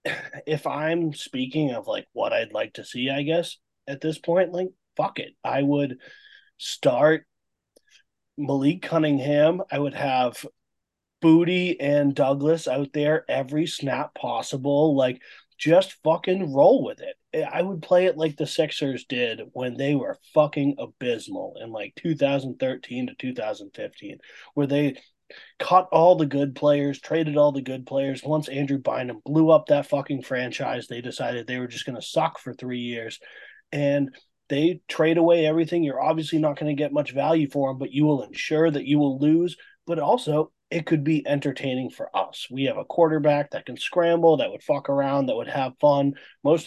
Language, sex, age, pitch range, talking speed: English, male, 30-49, 140-165 Hz, 175 wpm